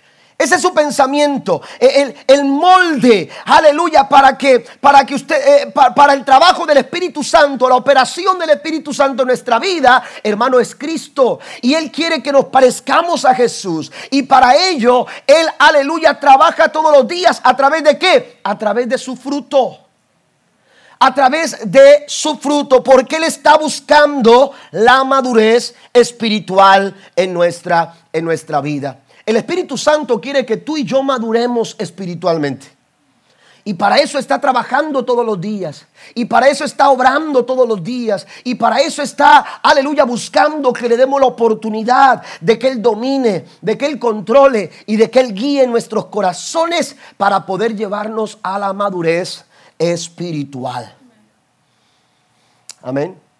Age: 40-59